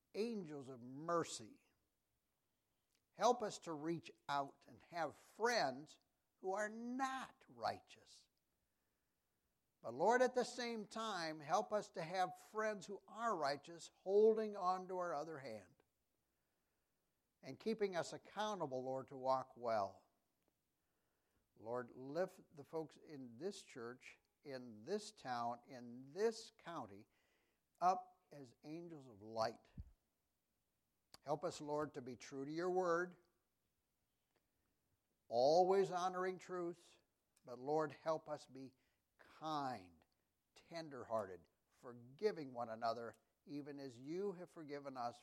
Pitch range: 130-185 Hz